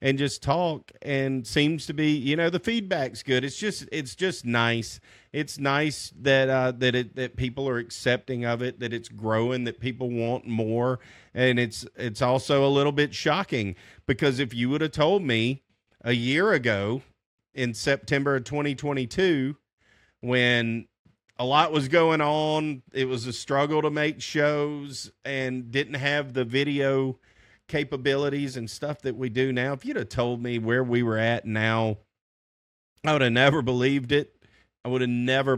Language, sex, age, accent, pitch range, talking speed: English, male, 40-59, American, 115-140 Hz, 175 wpm